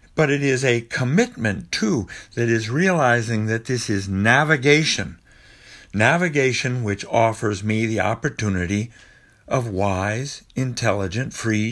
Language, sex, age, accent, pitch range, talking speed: English, male, 60-79, American, 105-145 Hz, 120 wpm